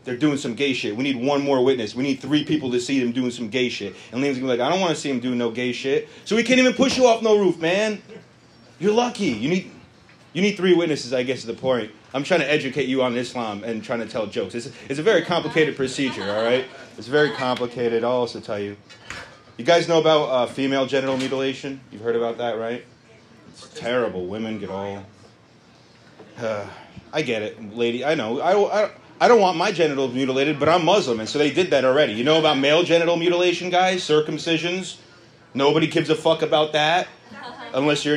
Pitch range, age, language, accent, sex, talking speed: 125-175 Hz, 30-49, English, American, male, 230 wpm